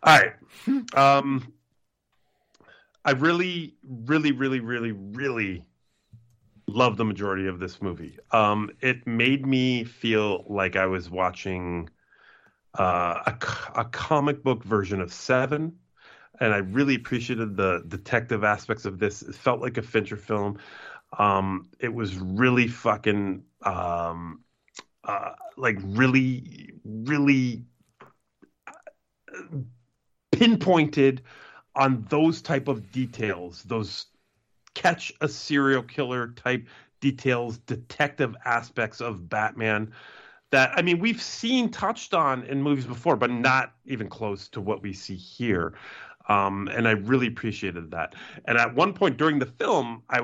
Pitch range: 105-135 Hz